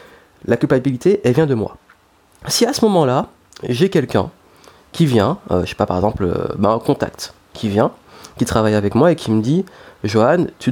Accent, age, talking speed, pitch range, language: French, 30-49, 200 wpm, 110-150 Hz, French